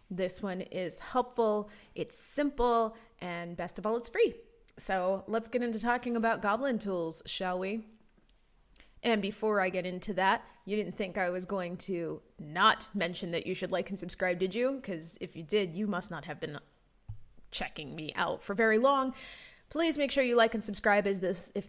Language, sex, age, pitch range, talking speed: English, female, 20-39, 185-235 Hz, 190 wpm